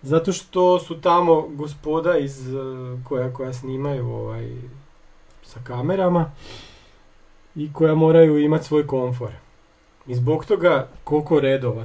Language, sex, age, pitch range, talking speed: Croatian, male, 40-59, 130-175 Hz, 115 wpm